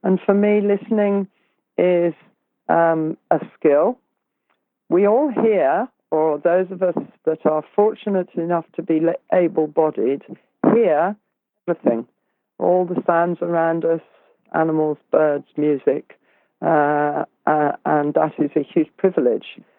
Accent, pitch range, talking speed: British, 155-190 Hz, 120 wpm